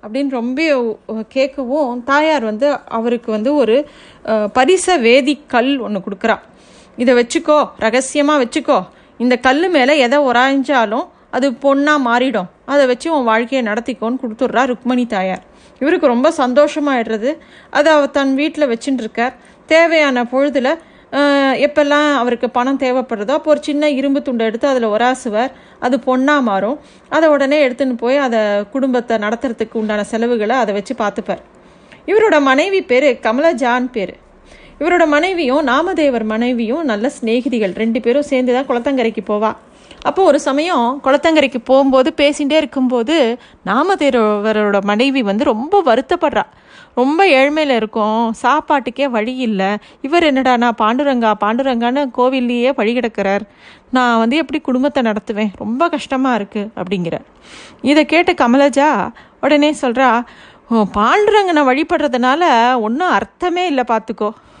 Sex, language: female, Tamil